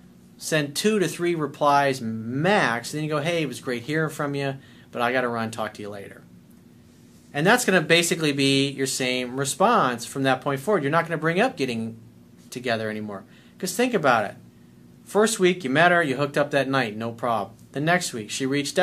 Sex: male